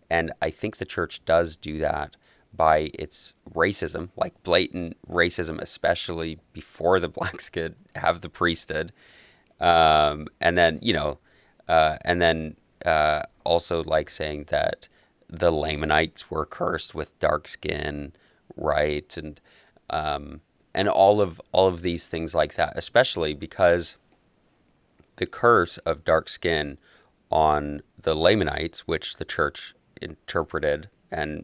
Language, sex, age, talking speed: English, male, 30-49, 130 wpm